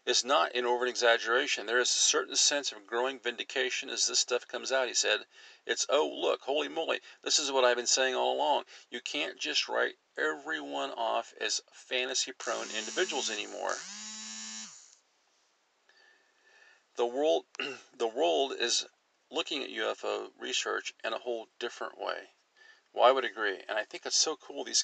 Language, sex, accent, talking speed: English, male, American, 160 wpm